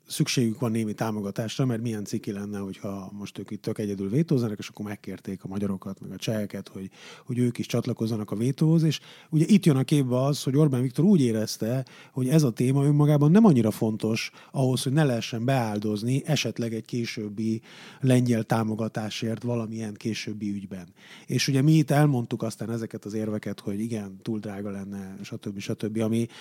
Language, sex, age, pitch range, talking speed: Hungarian, male, 30-49, 105-130 Hz, 180 wpm